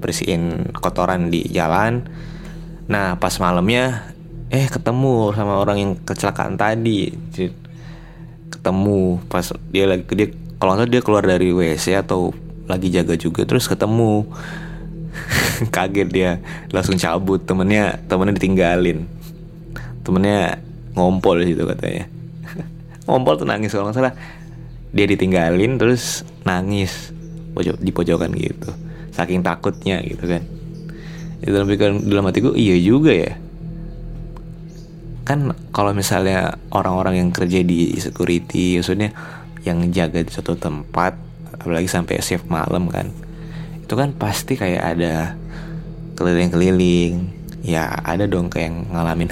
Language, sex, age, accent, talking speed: Indonesian, male, 20-39, native, 120 wpm